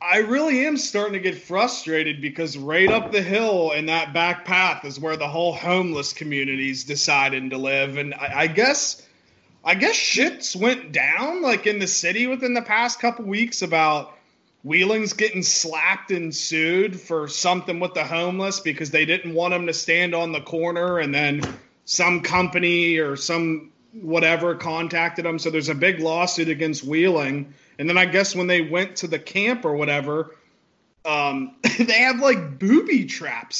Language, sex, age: English, male, 30-49